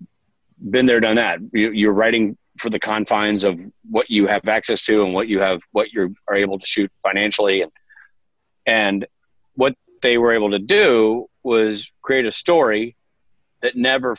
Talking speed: 170 wpm